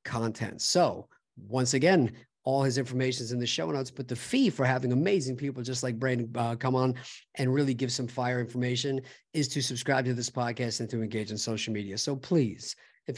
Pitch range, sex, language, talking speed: 120-140 Hz, male, English, 210 wpm